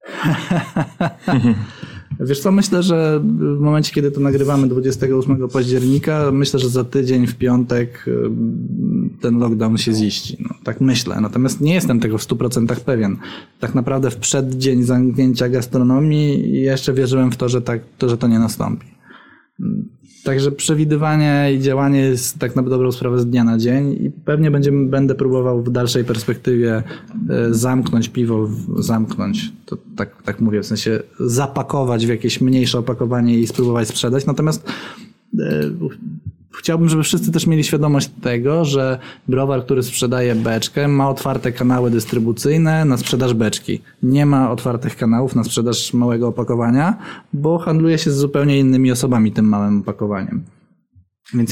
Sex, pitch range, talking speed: male, 120-140 Hz, 140 wpm